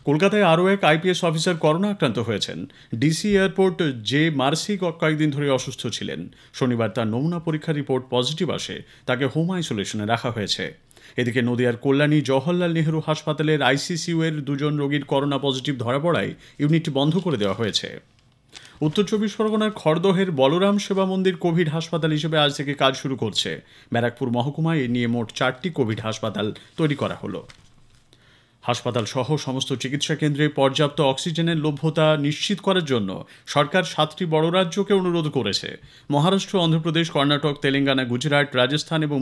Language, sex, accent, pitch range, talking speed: Bengali, male, native, 130-165 Hz, 150 wpm